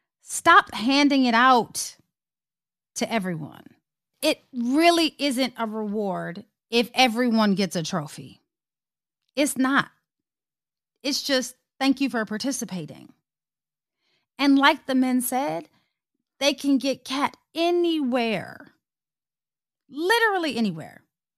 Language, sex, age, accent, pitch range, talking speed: English, female, 30-49, American, 195-280 Hz, 100 wpm